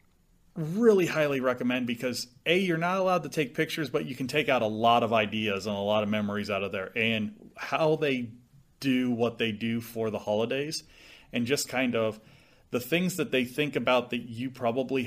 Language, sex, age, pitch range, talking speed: English, male, 30-49, 120-150 Hz, 205 wpm